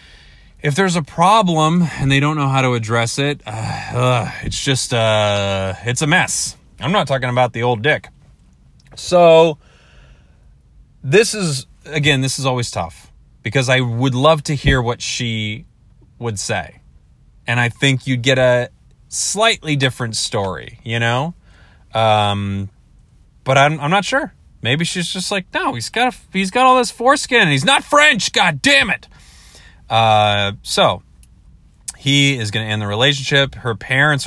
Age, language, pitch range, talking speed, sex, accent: 30-49, English, 100-145 Hz, 165 wpm, male, American